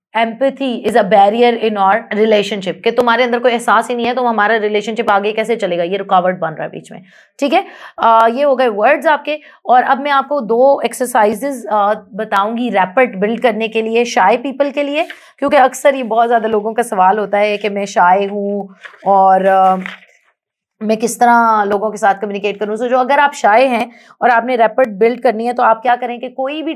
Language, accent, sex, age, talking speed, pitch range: English, Indian, female, 30-49, 195 wpm, 210-255 Hz